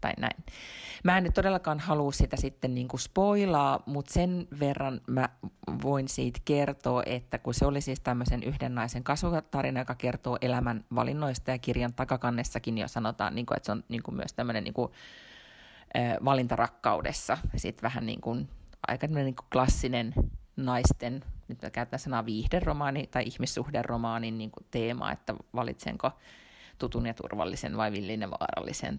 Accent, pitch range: native, 115-140 Hz